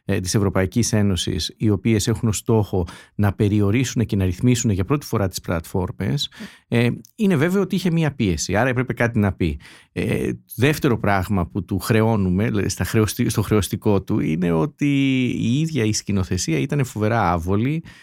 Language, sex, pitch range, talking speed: Greek, male, 100-135 Hz, 150 wpm